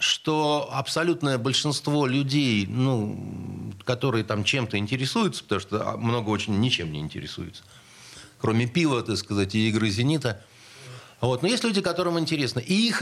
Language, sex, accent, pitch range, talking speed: Russian, male, native, 125-175 Hz, 145 wpm